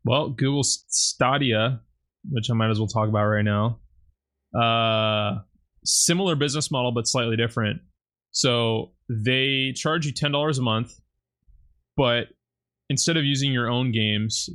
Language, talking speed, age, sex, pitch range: English, 135 wpm, 20-39, male, 110-130 Hz